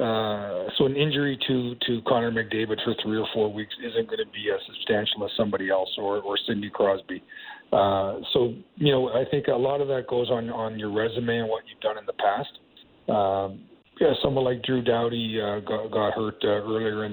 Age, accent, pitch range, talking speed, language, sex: 40-59, American, 110-135 Hz, 215 wpm, English, male